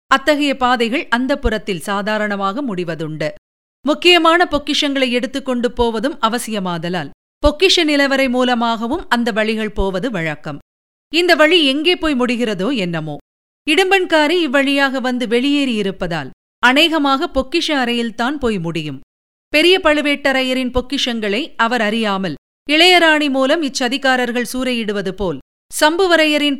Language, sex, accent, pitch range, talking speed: Tamil, female, native, 210-290 Hz, 100 wpm